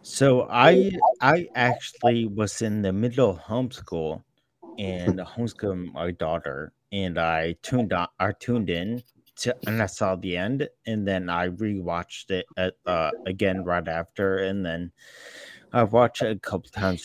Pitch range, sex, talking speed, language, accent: 90-120 Hz, male, 155 wpm, English, American